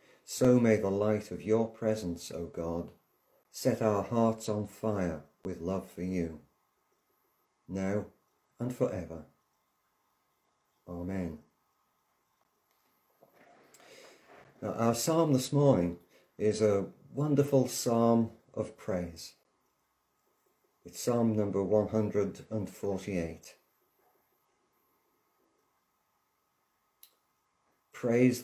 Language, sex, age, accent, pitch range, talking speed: English, male, 50-69, British, 90-120 Hz, 90 wpm